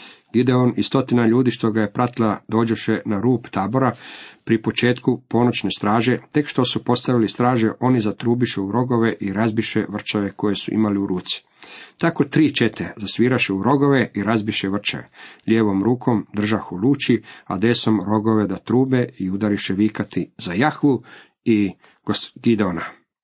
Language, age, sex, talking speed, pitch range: Croatian, 40-59, male, 145 wpm, 105-125 Hz